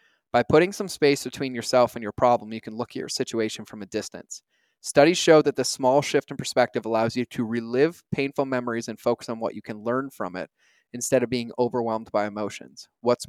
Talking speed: 215 wpm